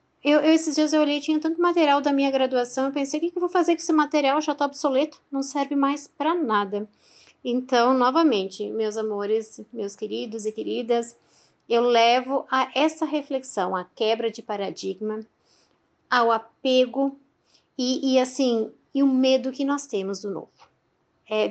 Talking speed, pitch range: 175 wpm, 215-275 Hz